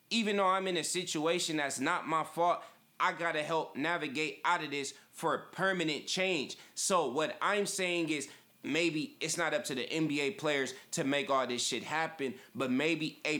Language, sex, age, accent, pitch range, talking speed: English, male, 20-39, American, 155-195 Hz, 195 wpm